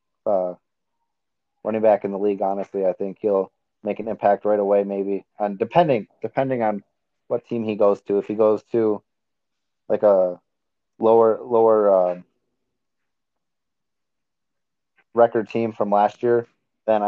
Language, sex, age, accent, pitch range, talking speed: English, male, 30-49, American, 100-115 Hz, 140 wpm